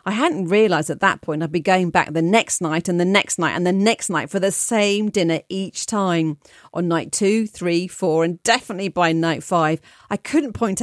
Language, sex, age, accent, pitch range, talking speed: English, female, 40-59, British, 160-205 Hz, 220 wpm